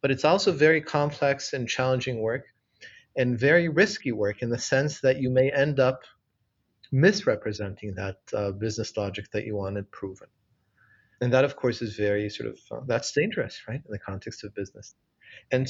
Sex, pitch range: male, 105-140 Hz